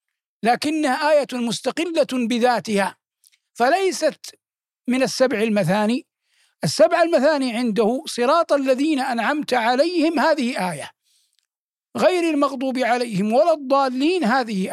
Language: Arabic